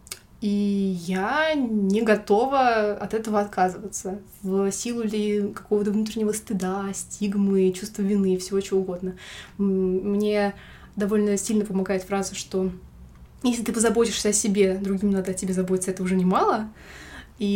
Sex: female